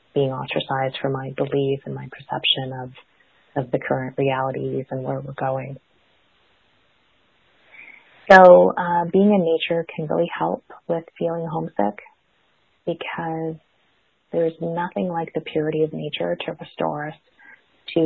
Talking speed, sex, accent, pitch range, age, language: 135 wpm, female, American, 140-160 Hz, 30-49, English